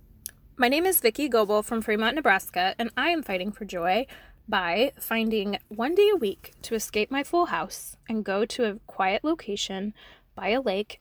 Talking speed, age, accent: 185 wpm, 20-39, American